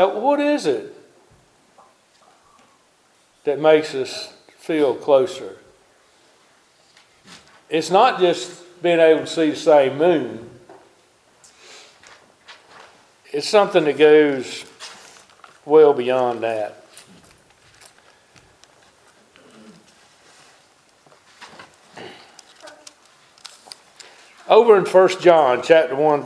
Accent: American